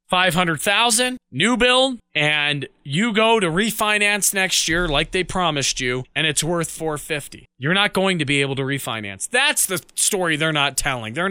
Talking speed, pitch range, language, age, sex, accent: 175 wpm, 175-235 Hz, English, 20-39, male, American